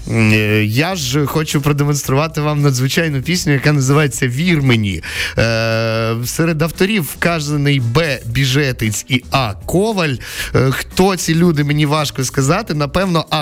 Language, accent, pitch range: Ukrainian, native, 110-155 Hz